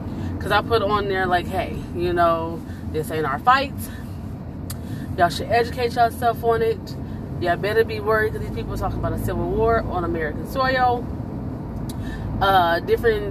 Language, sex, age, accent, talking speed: English, female, 20-39, American, 165 wpm